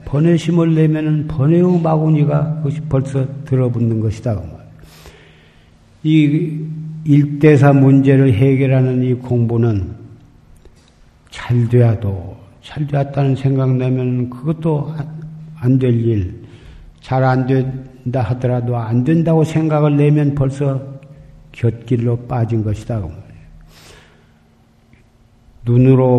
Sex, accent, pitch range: male, native, 120-155 Hz